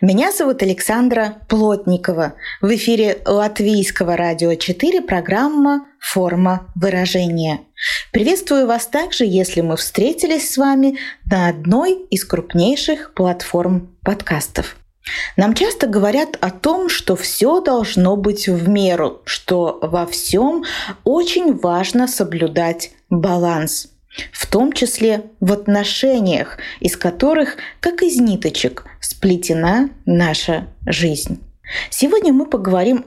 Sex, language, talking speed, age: female, Russian, 115 wpm, 20-39